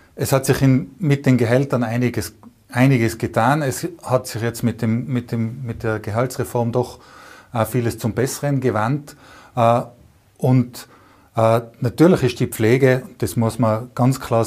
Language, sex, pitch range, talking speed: German, male, 115-130 Hz, 150 wpm